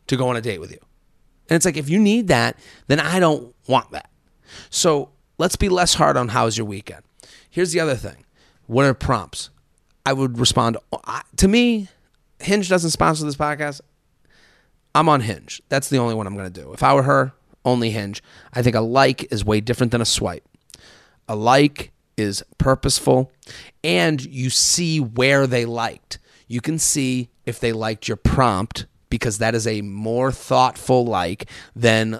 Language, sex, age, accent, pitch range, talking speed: English, male, 30-49, American, 110-145 Hz, 180 wpm